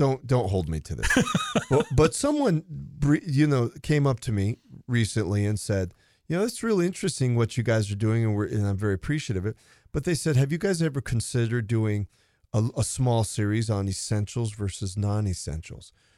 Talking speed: 195 wpm